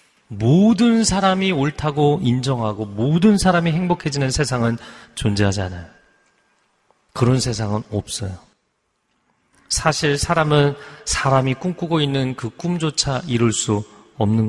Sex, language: male, Korean